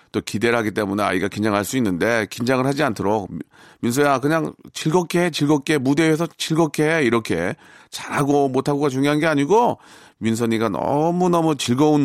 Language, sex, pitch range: Korean, male, 110-160 Hz